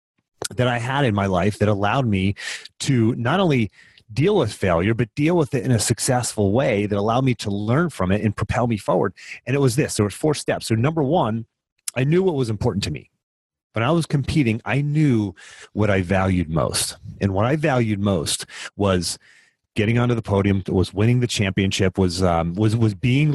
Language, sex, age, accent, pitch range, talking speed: English, male, 30-49, American, 100-130 Hz, 210 wpm